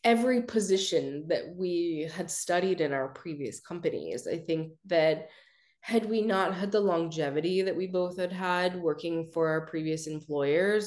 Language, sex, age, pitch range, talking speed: English, female, 20-39, 160-195 Hz, 160 wpm